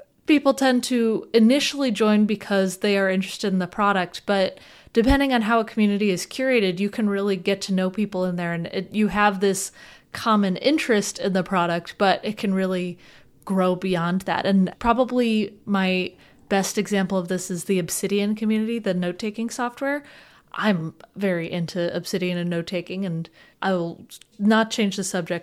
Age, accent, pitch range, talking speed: 20-39, American, 185-220 Hz, 175 wpm